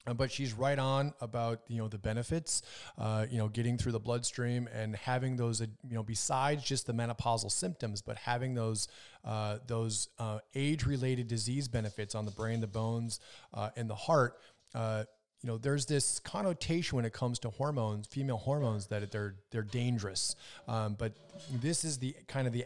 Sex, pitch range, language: male, 110-130 Hz, English